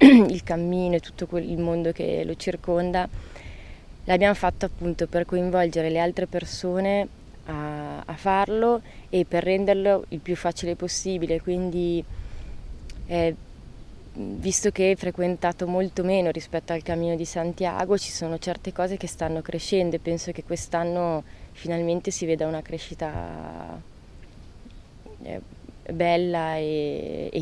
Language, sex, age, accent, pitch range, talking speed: Italian, female, 20-39, native, 150-175 Hz, 130 wpm